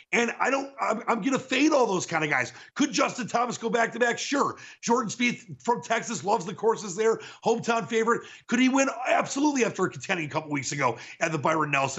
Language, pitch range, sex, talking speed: English, 160-230 Hz, male, 230 wpm